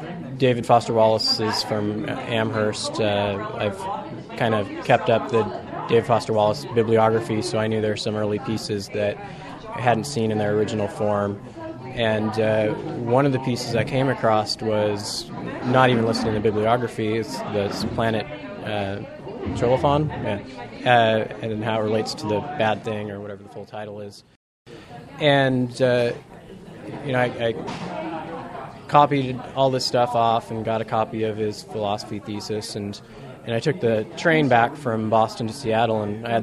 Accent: American